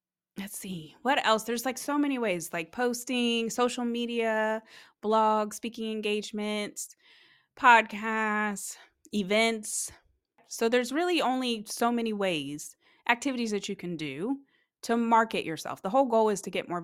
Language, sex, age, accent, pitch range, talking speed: English, female, 20-39, American, 165-235 Hz, 145 wpm